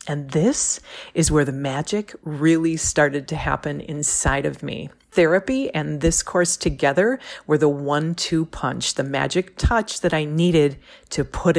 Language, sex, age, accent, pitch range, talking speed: English, female, 40-59, American, 150-210 Hz, 155 wpm